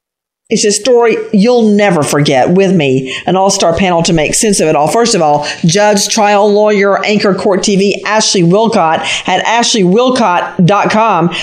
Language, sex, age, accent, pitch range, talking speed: English, female, 50-69, American, 165-210 Hz, 155 wpm